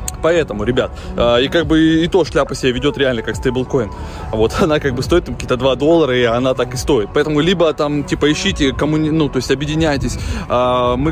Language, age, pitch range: Russian, 20-39, 125-160 Hz